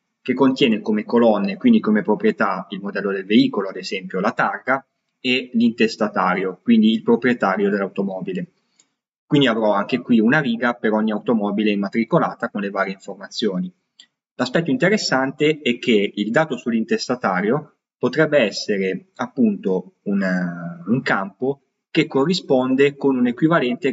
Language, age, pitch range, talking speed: Italian, 20-39, 110-185 Hz, 135 wpm